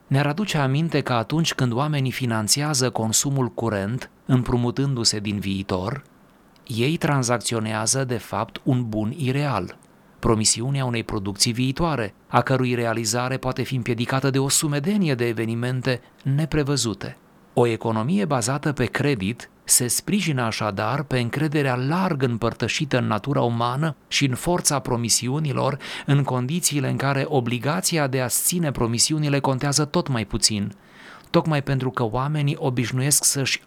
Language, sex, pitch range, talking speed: Romanian, male, 115-140 Hz, 130 wpm